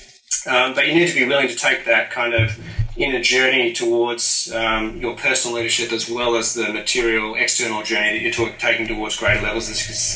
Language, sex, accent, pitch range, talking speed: English, male, Australian, 110-120 Hz, 195 wpm